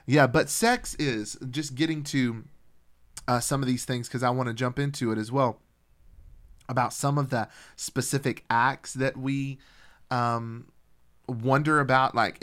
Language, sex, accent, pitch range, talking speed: English, male, American, 120-150 Hz, 160 wpm